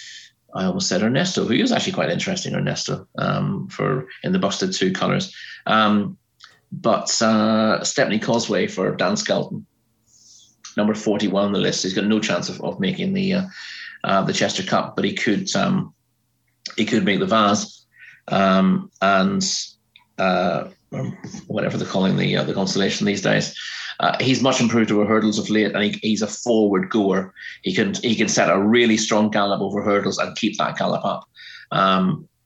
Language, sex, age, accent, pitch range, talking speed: English, male, 30-49, British, 105-120 Hz, 175 wpm